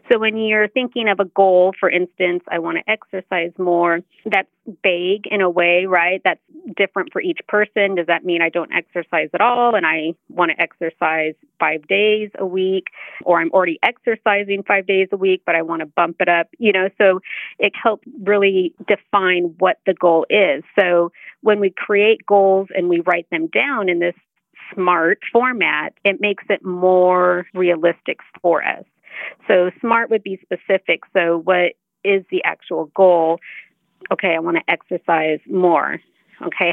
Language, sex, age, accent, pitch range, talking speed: English, female, 30-49, American, 175-205 Hz, 175 wpm